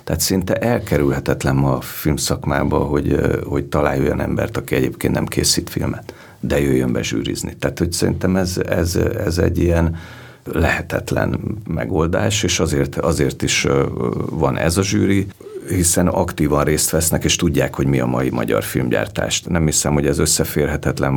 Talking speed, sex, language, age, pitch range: 155 wpm, male, Hungarian, 50-69, 70-90 Hz